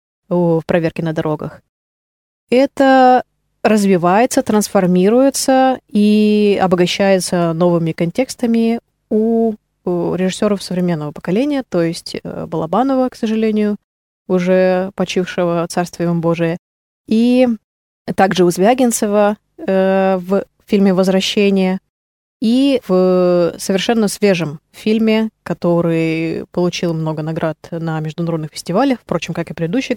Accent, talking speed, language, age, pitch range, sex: native, 95 wpm, Russian, 20-39, 175-220 Hz, female